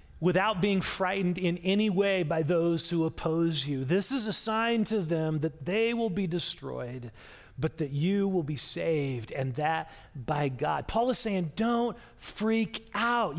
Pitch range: 170-230 Hz